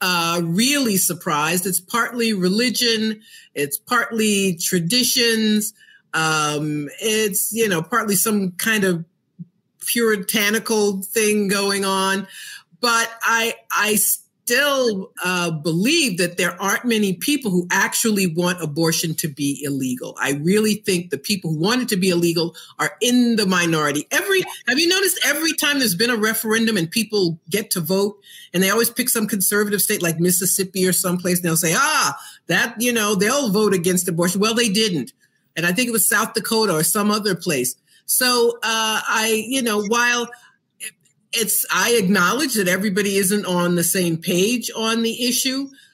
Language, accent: English, American